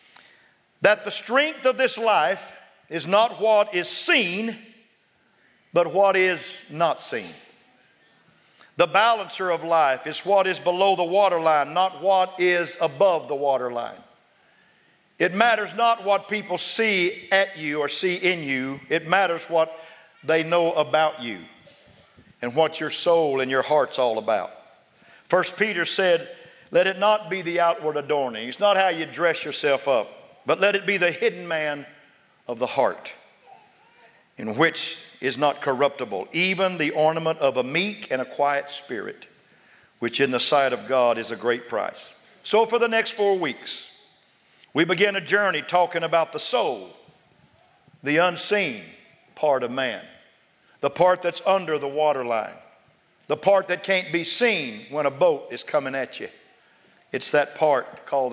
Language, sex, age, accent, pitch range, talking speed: English, male, 50-69, American, 150-195 Hz, 160 wpm